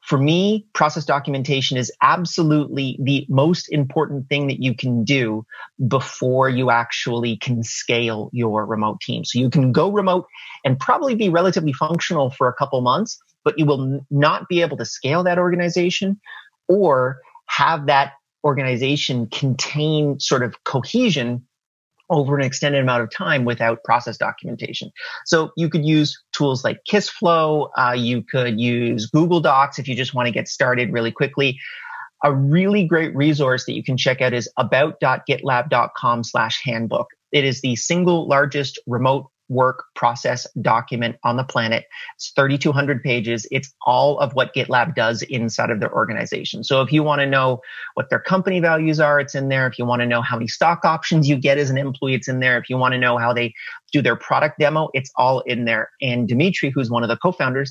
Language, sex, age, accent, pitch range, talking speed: English, male, 30-49, American, 125-155 Hz, 185 wpm